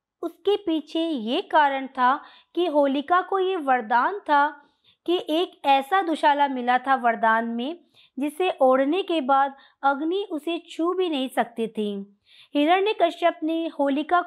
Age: 20-39